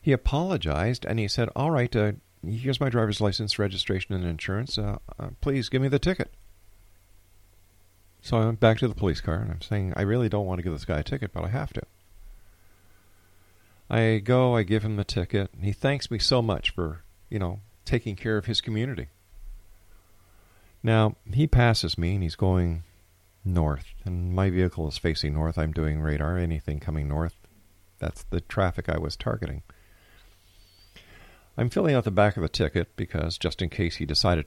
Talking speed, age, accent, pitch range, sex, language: 190 wpm, 50-69, American, 90-105 Hz, male, English